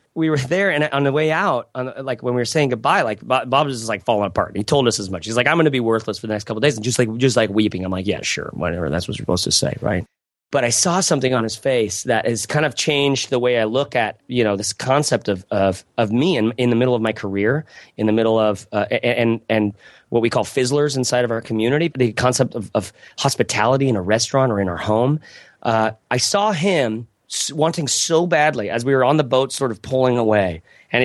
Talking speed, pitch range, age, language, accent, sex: 265 wpm, 110-140 Hz, 30-49, English, American, male